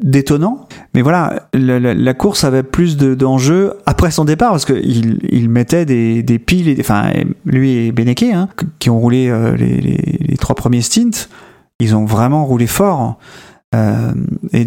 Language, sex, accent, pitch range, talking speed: French, male, French, 120-150 Hz, 180 wpm